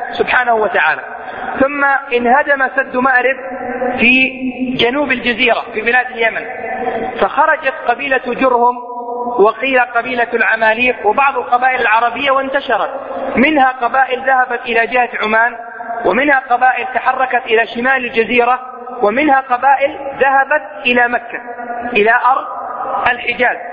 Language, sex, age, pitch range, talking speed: English, male, 40-59, 240-265 Hz, 105 wpm